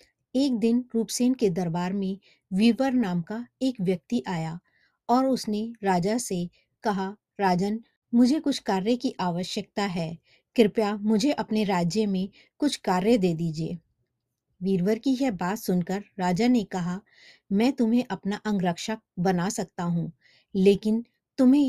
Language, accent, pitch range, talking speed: Hindi, native, 190-240 Hz, 140 wpm